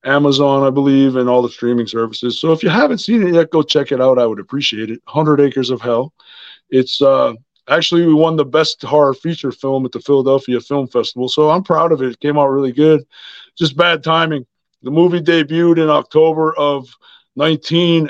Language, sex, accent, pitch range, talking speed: English, male, American, 135-160 Hz, 205 wpm